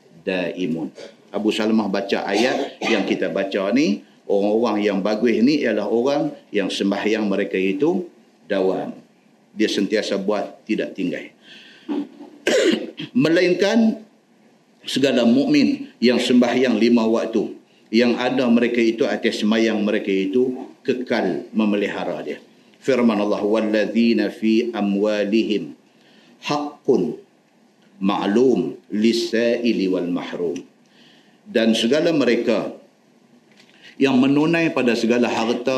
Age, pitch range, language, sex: 50-69, 110-145 Hz, Malay, male